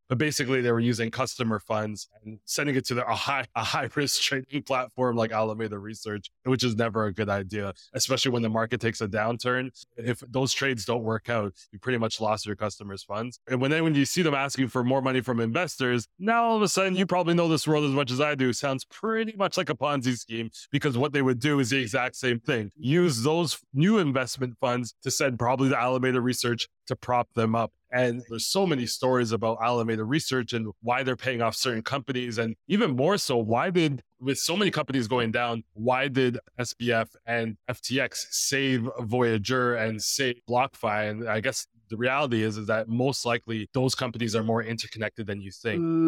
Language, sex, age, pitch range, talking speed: English, male, 20-39, 115-135 Hz, 215 wpm